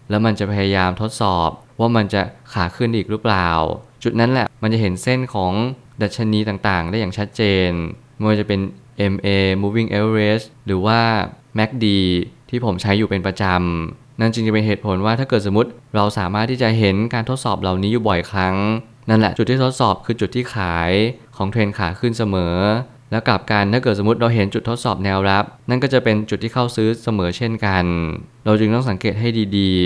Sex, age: male, 20-39